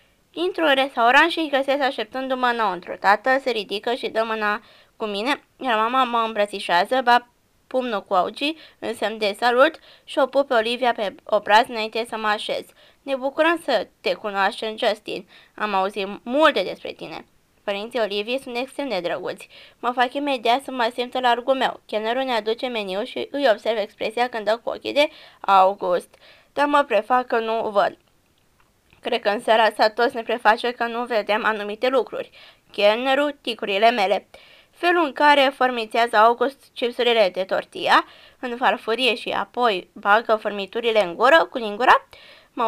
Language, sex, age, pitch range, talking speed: Romanian, female, 20-39, 210-265 Hz, 170 wpm